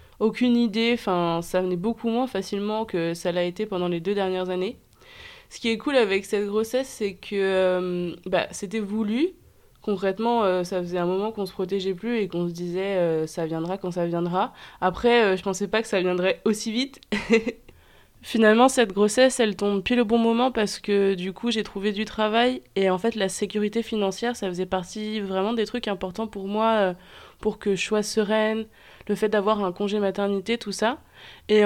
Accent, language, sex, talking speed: French, French, female, 205 wpm